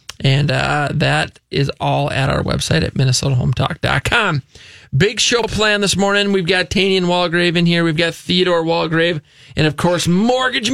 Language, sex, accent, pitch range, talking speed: English, male, American, 140-170 Hz, 160 wpm